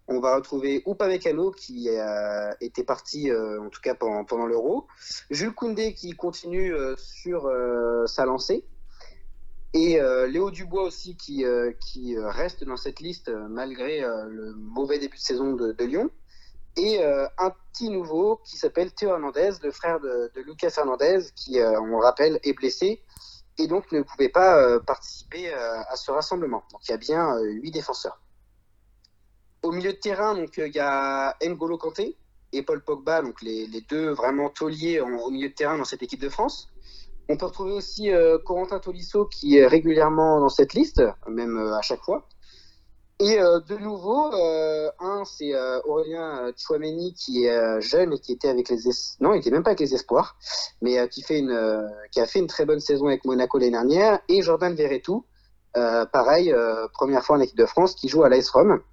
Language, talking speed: French, 185 wpm